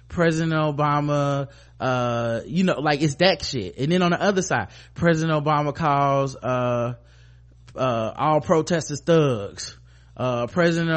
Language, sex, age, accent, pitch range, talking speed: English, male, 20-39, American, 120-170 Hz, 135 wpm